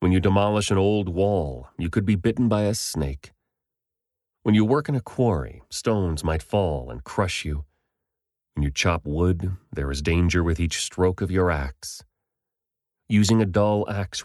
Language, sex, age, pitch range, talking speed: English, male, 30-49, 75-100 Hz, 175 wpm